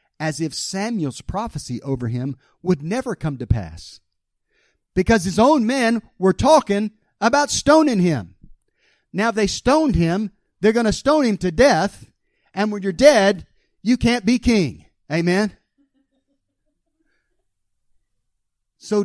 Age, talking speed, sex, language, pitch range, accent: 40-59, 130 wpm, male, English, 150-220 Hz, American